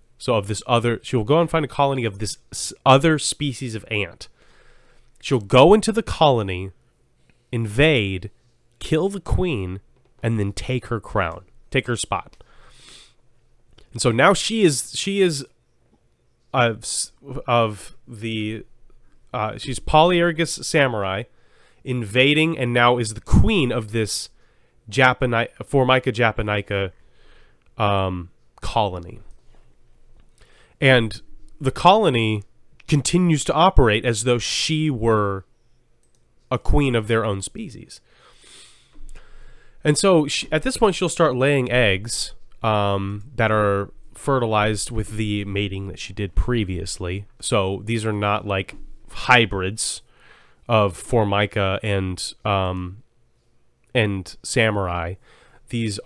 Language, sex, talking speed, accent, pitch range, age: English, male, 120 wpm, American, 100-130 Hz, 30-49